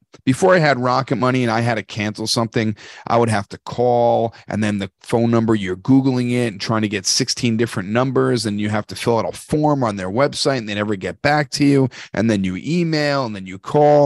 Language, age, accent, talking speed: English, 40-59, American, 245 wpm